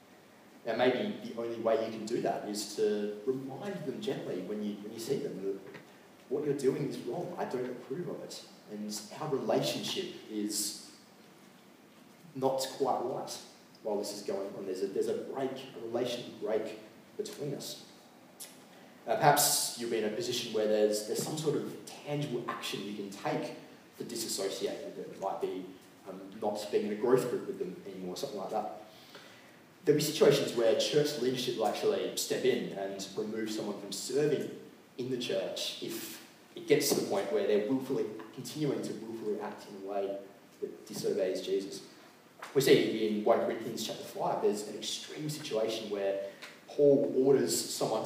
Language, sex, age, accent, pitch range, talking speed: English, male, 30-49, Australian, 105-145 Hz, 180 wpm